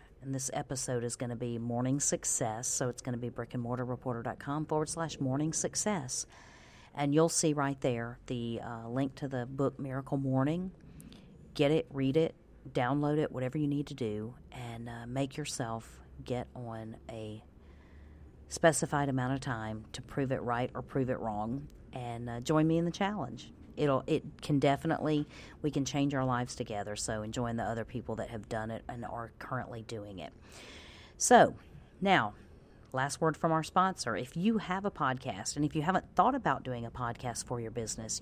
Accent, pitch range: American, 115-145 Hz